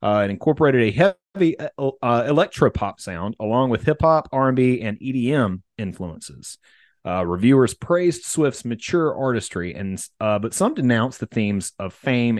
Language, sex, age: English, male, 30-49